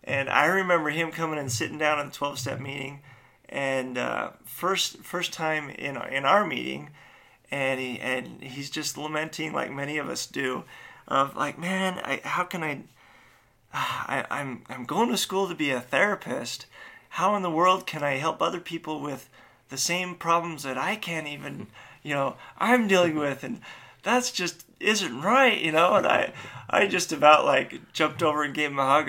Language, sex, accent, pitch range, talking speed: English, male, American, 135-170 Hz, 190 wpm